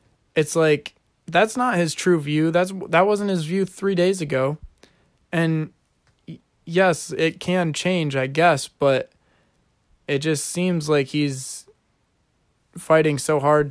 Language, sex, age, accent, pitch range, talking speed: English, male, 20-39, American, 135-160 Hz, 135 wpm